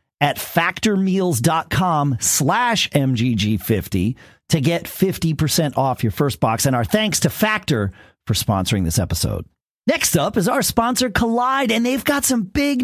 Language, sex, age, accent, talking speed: English, male, 40-59, American, 145 wpm